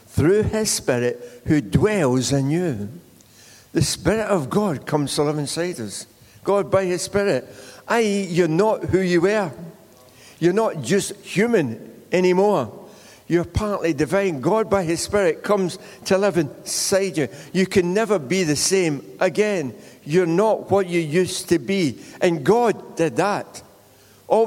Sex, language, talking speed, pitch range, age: male, English, 150 wpm, 160-200 Hz, 60-79